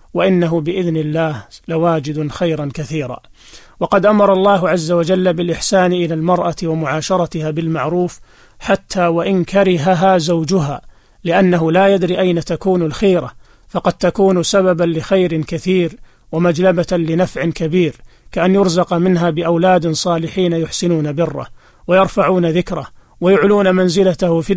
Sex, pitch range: male, 165-185 Hz